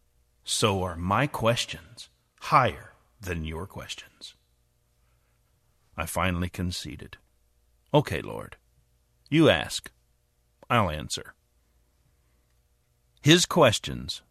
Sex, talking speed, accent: male, 80 wpm, American